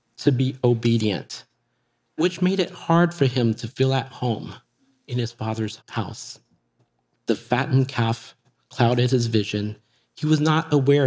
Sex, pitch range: male, 115-145 Hz